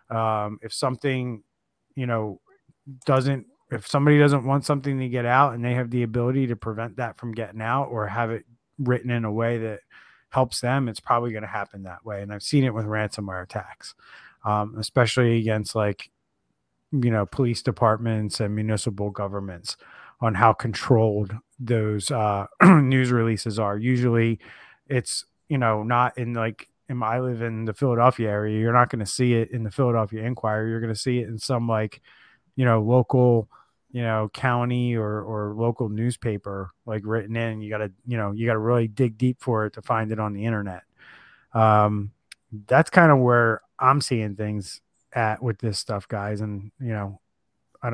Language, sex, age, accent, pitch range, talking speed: English, male, 30-49, American, 110-125 Hz, 185 wpm